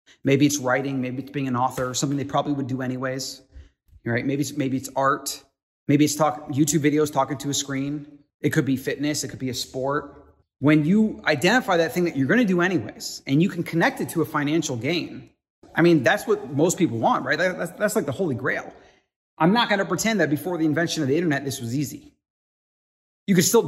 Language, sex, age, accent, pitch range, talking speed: English, male, 30-49, American, 135-170 Hz, 220 wpm